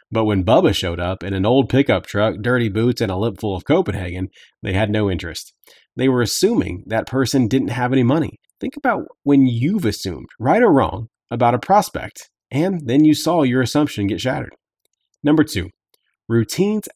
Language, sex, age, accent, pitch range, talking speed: English, male, 30-49, American, 105-145 Hz, 190 wpm